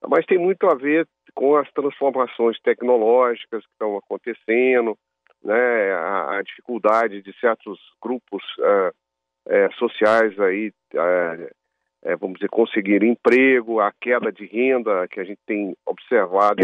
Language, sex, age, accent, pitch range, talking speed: Portuguese, male, 50-69, Brazilian, 100-120 Hz, 135 wpm